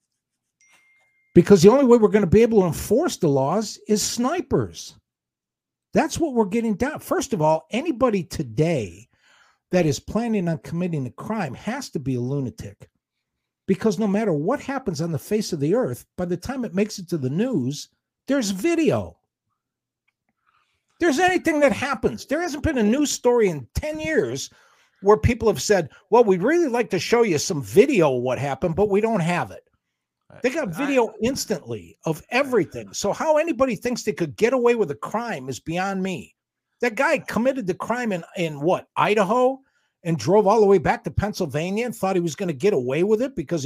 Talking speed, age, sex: 195 wpm, 60-79, male